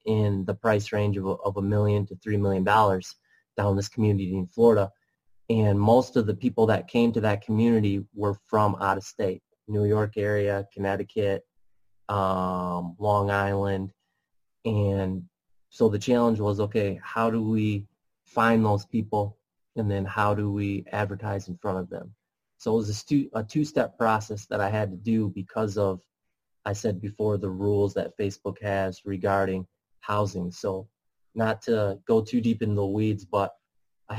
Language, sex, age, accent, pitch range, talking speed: English, male, 20-39, American, 100-110 Hz, 170 wpm